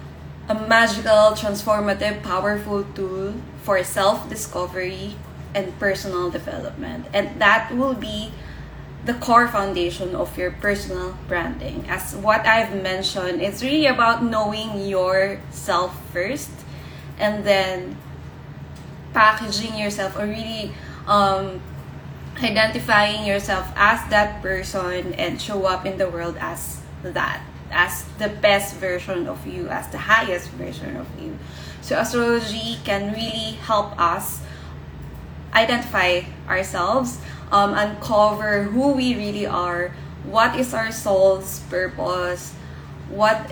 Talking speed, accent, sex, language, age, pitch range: 115 wpm, Filipino, female, English, 20-39, 185-215 Hz